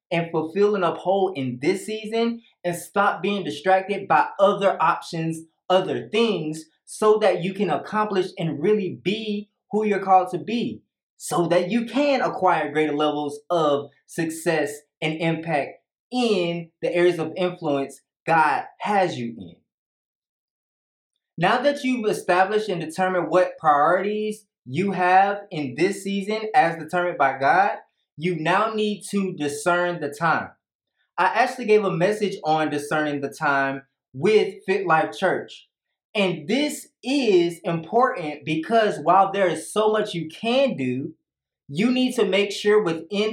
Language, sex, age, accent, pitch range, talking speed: English, male, 20-39, American, 165-210 Hz, 145 wpm